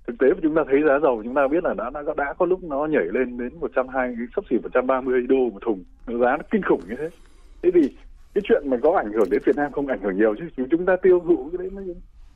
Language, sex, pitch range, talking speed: Vietnamese, male, 130-215 Hz, 270 wpm